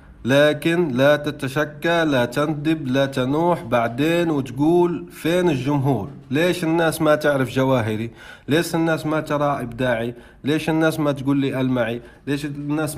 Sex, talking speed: male, 135 wpm